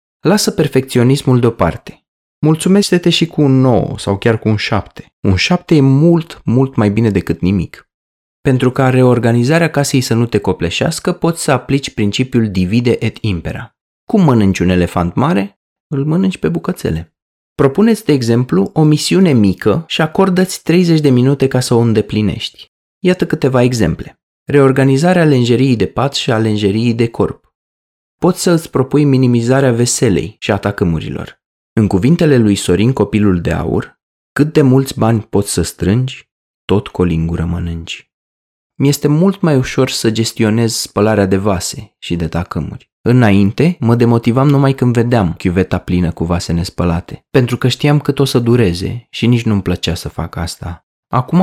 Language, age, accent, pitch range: Romanian, 30-49, native, 100-140 Hz